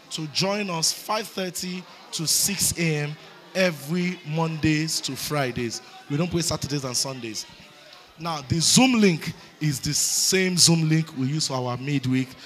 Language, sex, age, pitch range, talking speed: English, male, 20-39, 145-180 Hz, 150 wpm